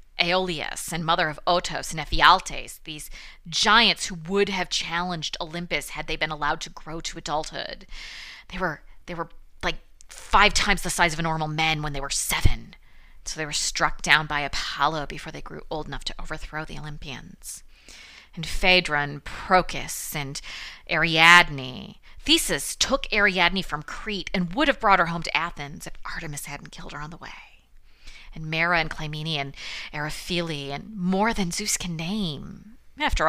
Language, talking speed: English, 170 wpm